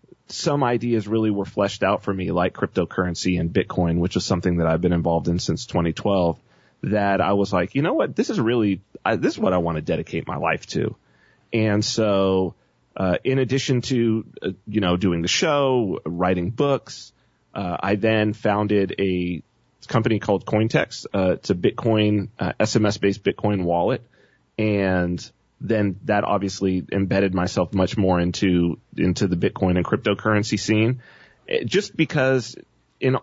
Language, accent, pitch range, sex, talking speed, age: English, American, 95-115 Hz, male, 165 wpm, 30-49